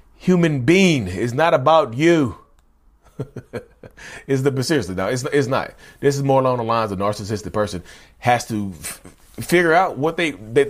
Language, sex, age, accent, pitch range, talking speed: English, male, 30-49, American, 105-155 Hz, 175 wpm